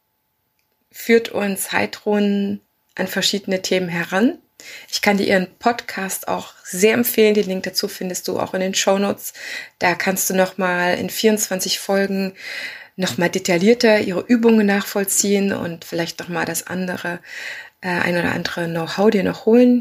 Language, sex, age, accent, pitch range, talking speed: German, female, 20-39, German, 180-220 Hz, 150 wpm